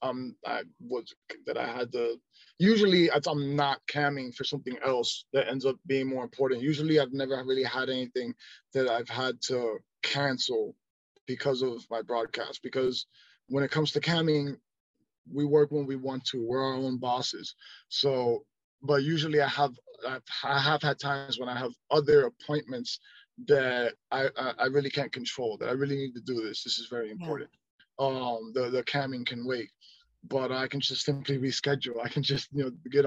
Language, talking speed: English, 185 wpm